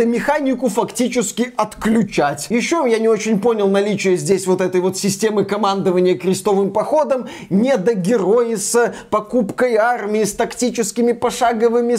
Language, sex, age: Russian, male, 20-39